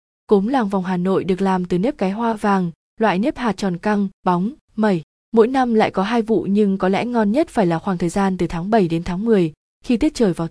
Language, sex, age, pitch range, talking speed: Vietnamese, female, 20-39, 185-230 Hz, 255 wpm